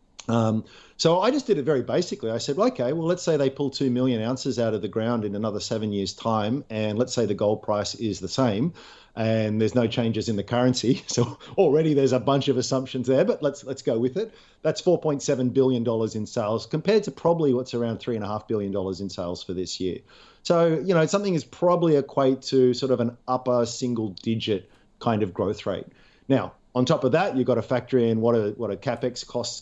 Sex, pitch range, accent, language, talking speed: male, 110-135 Hz, Australian, English, 230 wpm